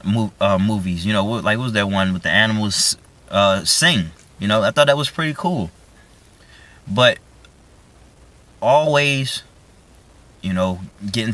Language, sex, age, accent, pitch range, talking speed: English, male, 20-39, American, 95-150 Hz, 150 wpm